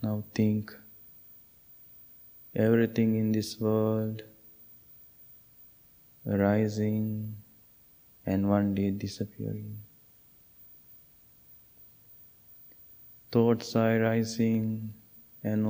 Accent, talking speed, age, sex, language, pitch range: Indian, 55 wpm, 20-39, male, English, 105-120 Hz